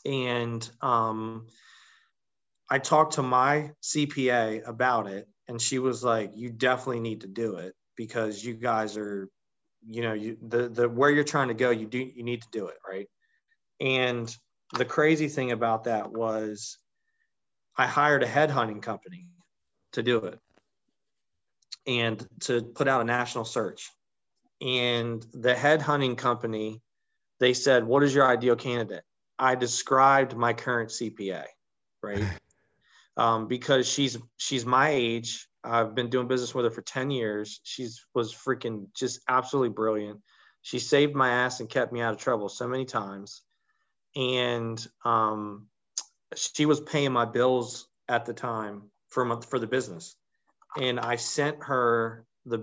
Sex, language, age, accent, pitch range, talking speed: male, English, 30-49, American, 115-130 Hz, 150 wpm